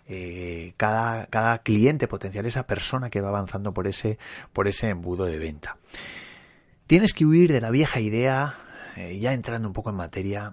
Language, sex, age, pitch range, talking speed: Spanish, male, 30-49, 95-125 Hz, 170 wpm